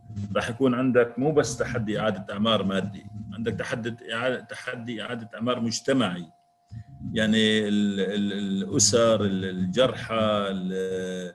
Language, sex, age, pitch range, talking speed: Arabic, male, 50-69, 100-120 Hz, 95 wpm